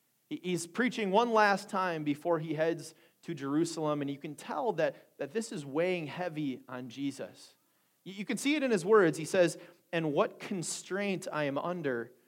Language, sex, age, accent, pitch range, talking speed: English, male, 30-49, American, 150-195 Hz, 185 wpm